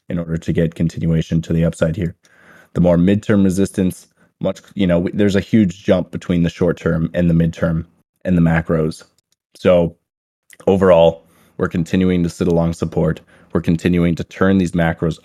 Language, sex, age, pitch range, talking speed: English, male, 20-39, 85-95 Hz, 175 wpm